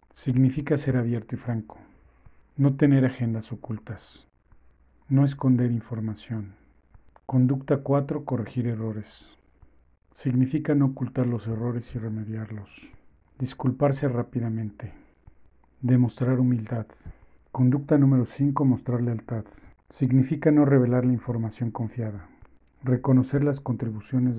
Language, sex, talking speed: Spanish, male, 100 wpm